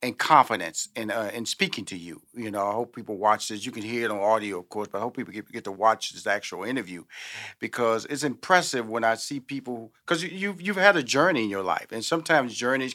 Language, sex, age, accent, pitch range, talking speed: English, male, 40-59, American, 120-165 Hz, 245 wpm